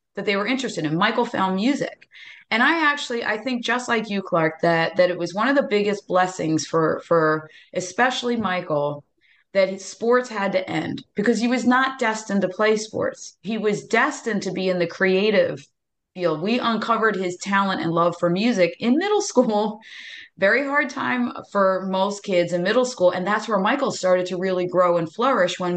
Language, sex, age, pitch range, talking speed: English, female, 30-49, 175-225 Hz, 195 wpm